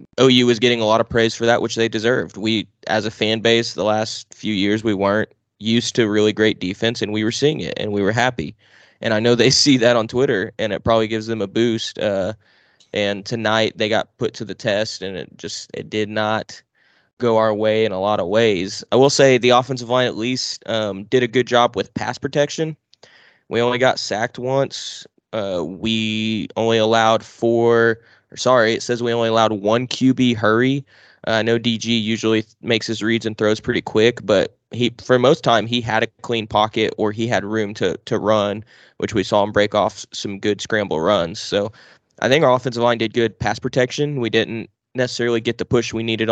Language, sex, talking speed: English, male, 220 wpm